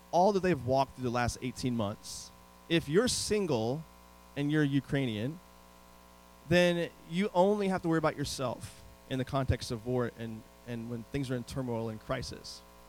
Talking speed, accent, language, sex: 170 wpm, American, English, male